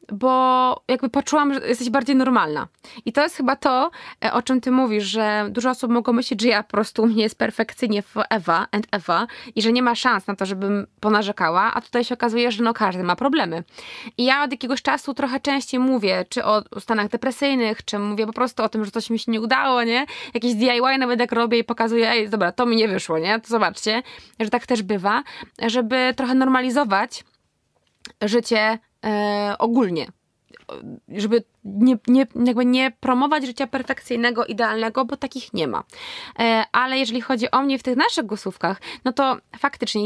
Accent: native